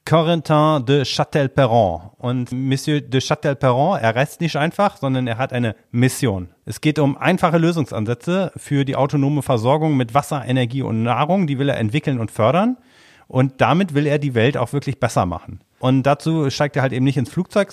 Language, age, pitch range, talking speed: German, 40-59, 125-155 Hz, 185 wpm